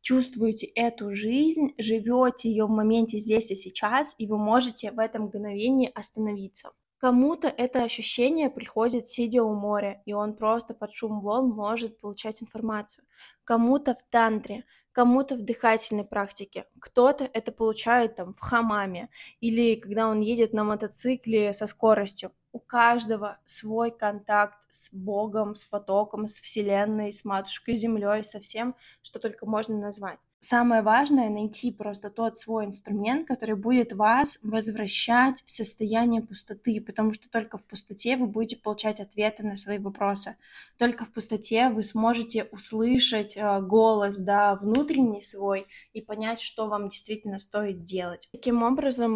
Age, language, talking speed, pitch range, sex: 20-39, Russian, 145 wpm, 210-235 Hz, female